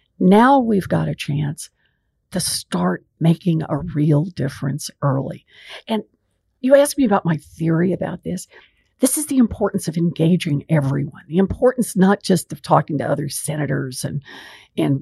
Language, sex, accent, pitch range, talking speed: English, female, American, 155-210 Hz, 155 wpm